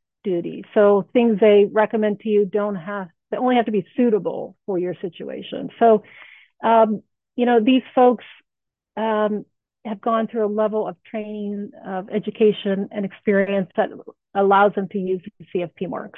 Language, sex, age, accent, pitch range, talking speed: English, female, 40-59, American, 195-230 Hz, 165 wpm